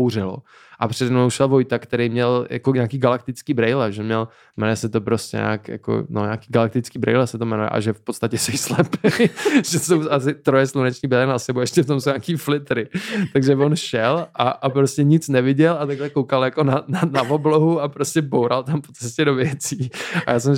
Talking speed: 215 wpm